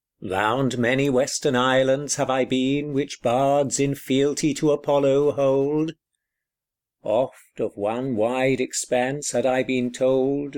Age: 50-69